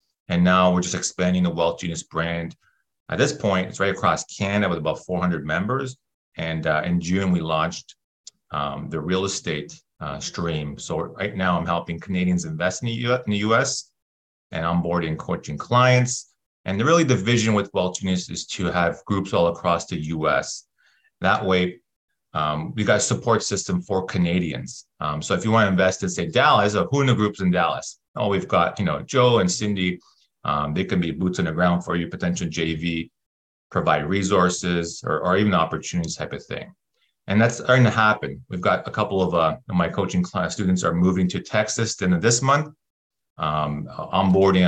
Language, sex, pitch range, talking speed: English, male, 85-115 Hz, 195 wpm